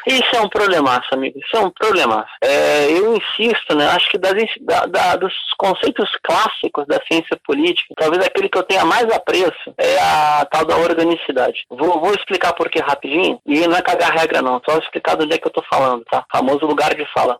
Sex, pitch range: male, 140-230 Hz